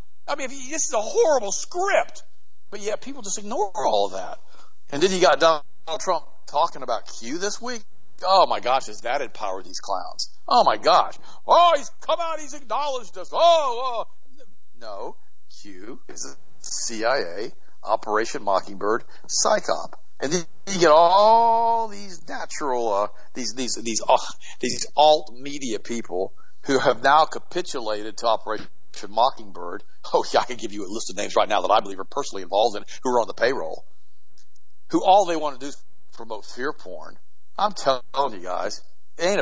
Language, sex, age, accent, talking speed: English, male, 50-69, American, 185 wpm